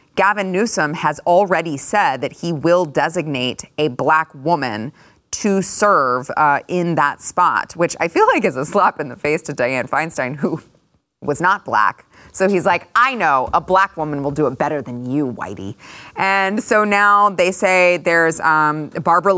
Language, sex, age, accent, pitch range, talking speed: English, female, 20-39, American, 145-180 Hz, 180 wpm